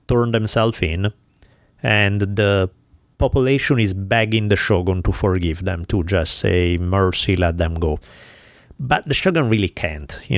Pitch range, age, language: 90-115 Hz, 30-49, English